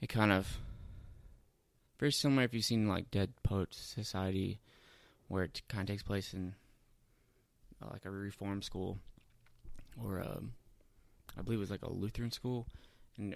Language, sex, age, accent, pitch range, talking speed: English, male, 20-39, American, 95-110 Hz, 155 wpm